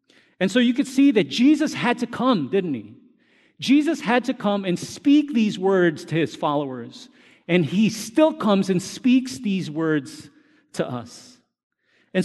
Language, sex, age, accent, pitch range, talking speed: English, male, 40-59, American, 160-235 Hz, 165 wpm